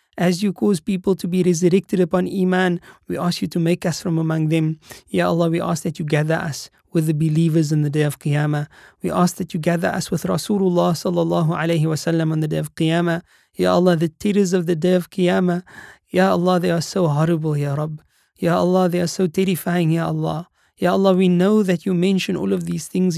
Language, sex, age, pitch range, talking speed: English, male, 20-39, 160-180 Hz, 225 wpm